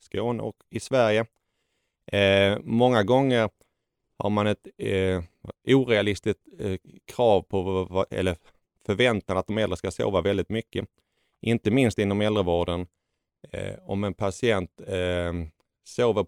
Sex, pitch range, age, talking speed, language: male, 90-110 Hz, 30-49, 125 wpm, Swedish